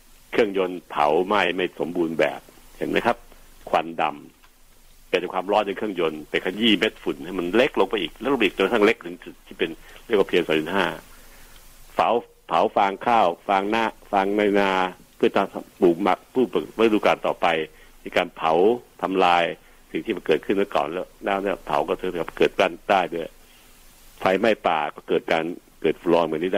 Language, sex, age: Thai, male, 70-89